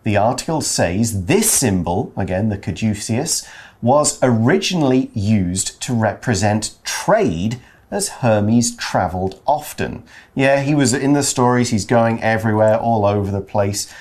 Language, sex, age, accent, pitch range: Chinese, male, 40-59, British, 105-140 Hz